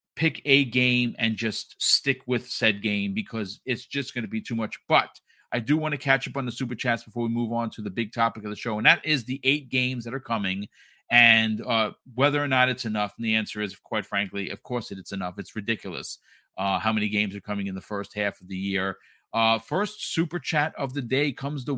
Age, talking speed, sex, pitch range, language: 40-59, 245 wpm, male, 110-140 Hz, English